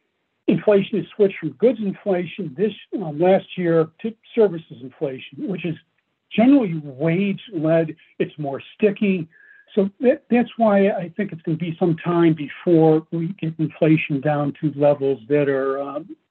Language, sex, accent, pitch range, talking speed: English, male, American, 145-185 Hz, 160 wpm